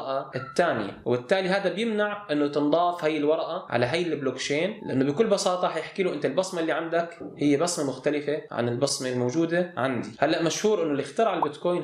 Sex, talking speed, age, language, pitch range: male, 165 wpm, 20-39, Arabic, 140-185 Hz